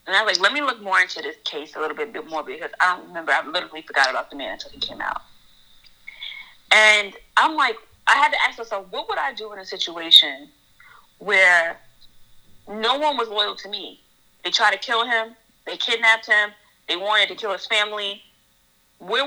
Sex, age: female, 30-49